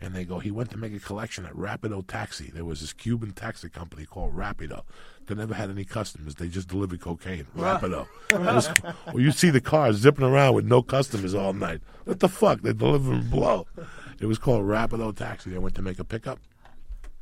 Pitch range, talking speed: 80-100 Hz, 215 wpm